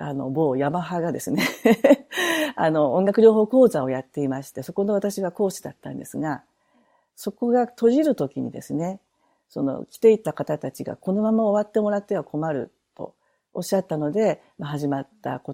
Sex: female